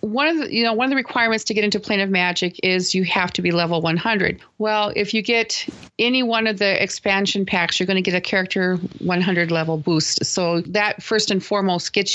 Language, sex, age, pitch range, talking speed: English, female, 40-59, 175-210 Hz, 230 wpm